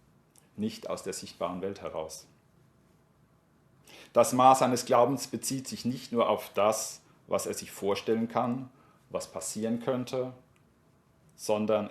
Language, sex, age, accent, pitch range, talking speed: German, male, 40-59, German, 110-135 Hz, 125 wpm